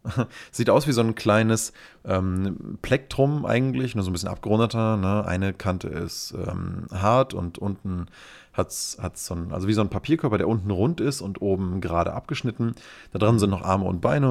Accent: German